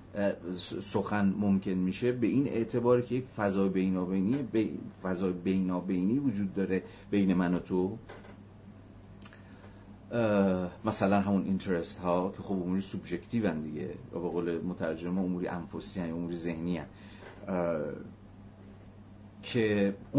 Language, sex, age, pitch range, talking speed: Arabic, male, 40-59, 95-105 Hz, 105 wpm